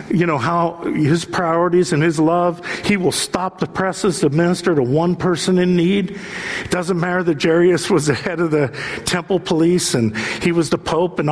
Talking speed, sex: 200 wpm, male